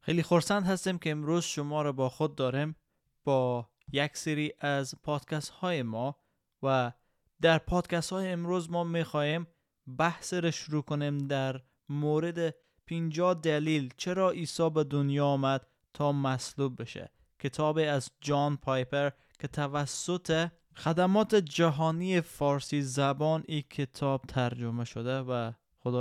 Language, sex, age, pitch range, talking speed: Persian, male, 20-39, 135-165 Hz, 125 wpm